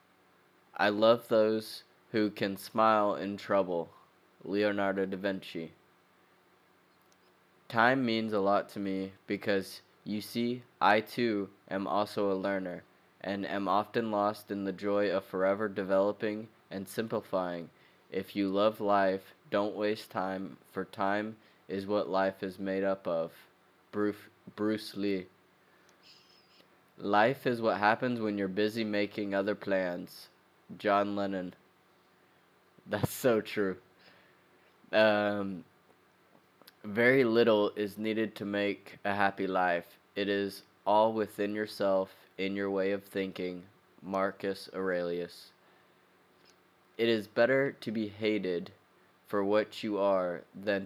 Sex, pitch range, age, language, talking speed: male, 95-105 Hz, 20-39, English, 125 wpm